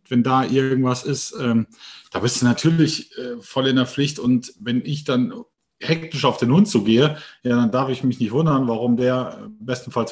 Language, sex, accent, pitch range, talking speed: German, male, German, 120-150 Hz, 180 wpm